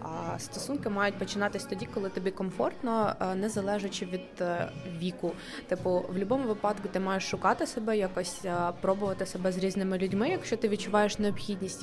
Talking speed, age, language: 145 wpm, 20-39, Ukrainian